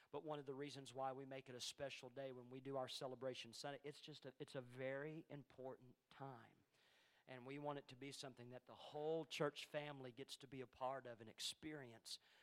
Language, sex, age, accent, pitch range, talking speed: English, male, 40-59, American, 140-205 Hz, 220 wpm